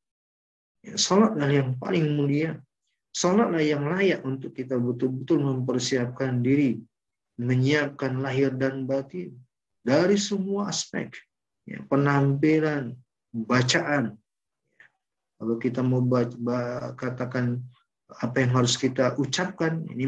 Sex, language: male, Indonesian